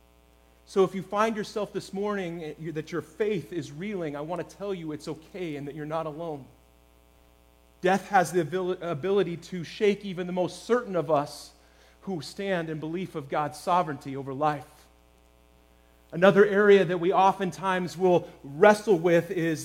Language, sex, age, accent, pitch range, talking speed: English, male, 30-49, American, 130-195 Hz, 165 wpm